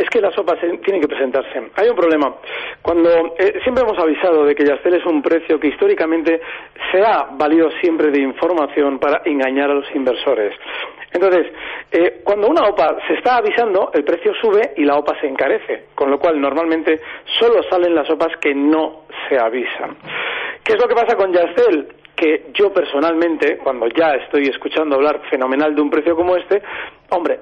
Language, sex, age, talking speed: Spanish, male, 40-59, 185 wpm